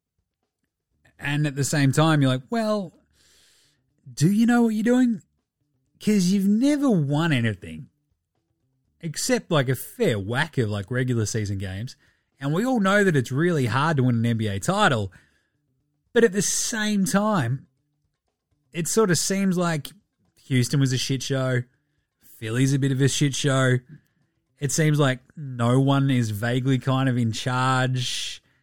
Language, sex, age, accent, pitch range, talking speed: English, male, 20-39, Australian, 120-150 Hz, 155 wpm